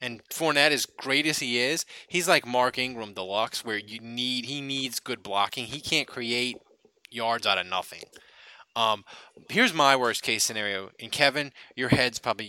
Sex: male